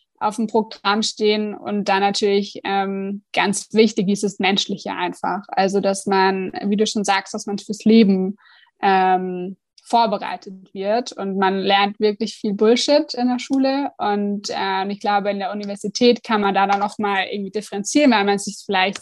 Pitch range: 200-235 Hz